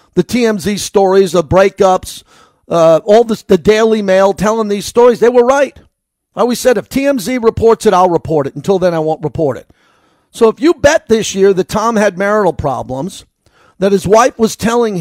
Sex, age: male, 50-69